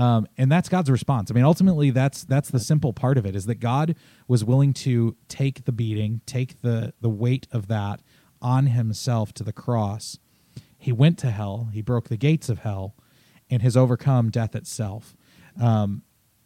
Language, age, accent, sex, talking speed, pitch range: English, 30-49, American, male, 185 wpm, 110-130 Hz